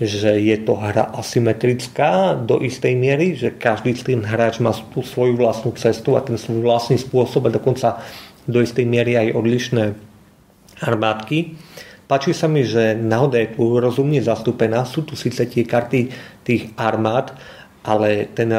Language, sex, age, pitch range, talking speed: Slovak, male, 40-59, 115-130 Hz, 160 wpm